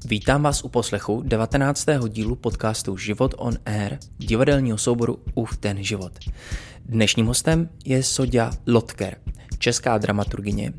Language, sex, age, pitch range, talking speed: Czech, male, 20-39, 105-125 Hz, 120 wpm